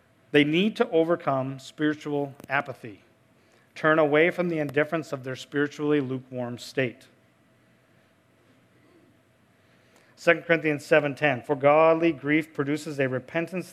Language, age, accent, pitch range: English, 40-59, American, 130-150 Hz